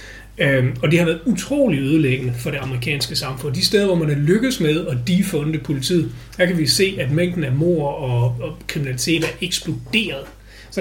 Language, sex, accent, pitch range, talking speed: Danish, male, native, 130-175 Hz, 195 wpm